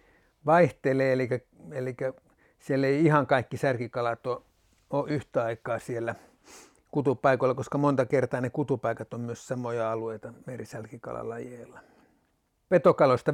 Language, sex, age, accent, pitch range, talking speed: Finnish, male, 60-79, native, 125-145 Hz, 110 wpm